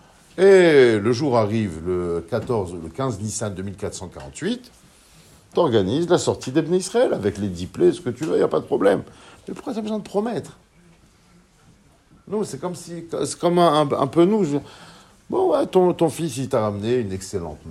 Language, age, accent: French, 50-69, French